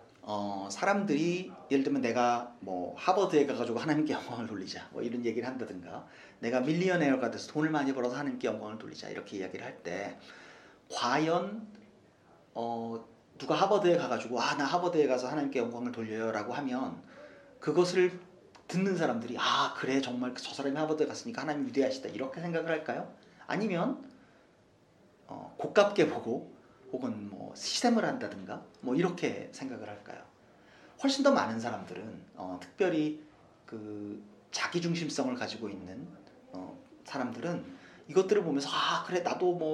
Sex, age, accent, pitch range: male, 40-59, native, 125-180 Hz